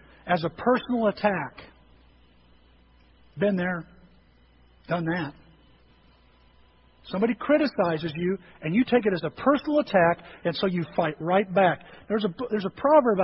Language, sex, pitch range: English, male, 160-225 Hz